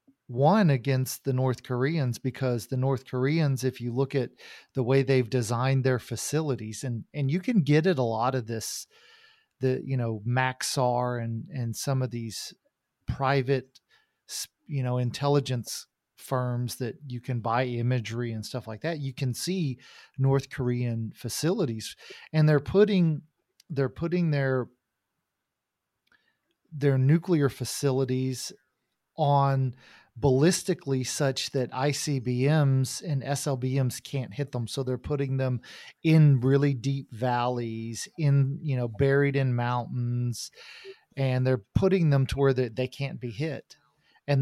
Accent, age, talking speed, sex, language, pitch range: American, 40-59, 140 wpm, male, English, 125-140 Hz